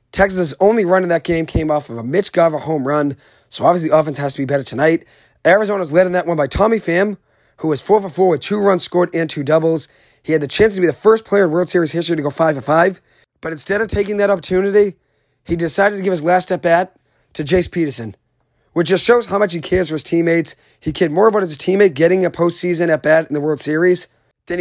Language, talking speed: English, 240 wpm